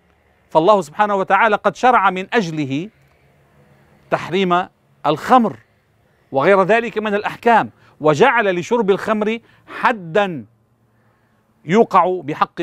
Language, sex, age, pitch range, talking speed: English, male, 40-59, 140-205 Hz, 90 wpm